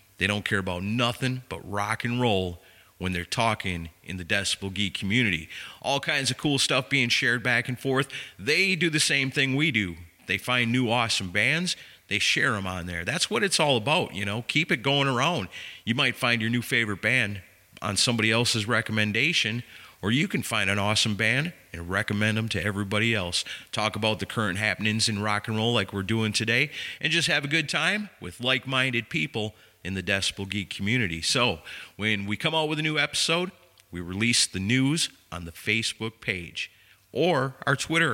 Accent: American